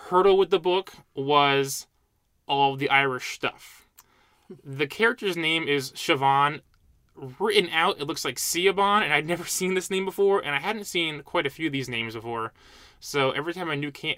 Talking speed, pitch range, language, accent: 180 wpm, 130-155 Hz, English, American